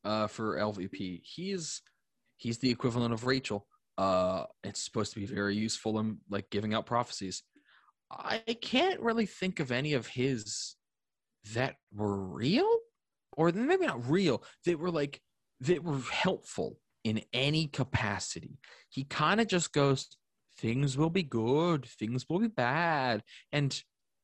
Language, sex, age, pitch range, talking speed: English, male, 20-39, 110-165 Hz, 145 wpm